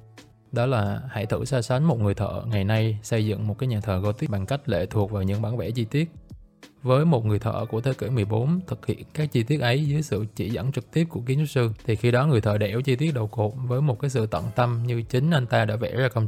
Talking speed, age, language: 280 wpm, 20-39, Vietnamese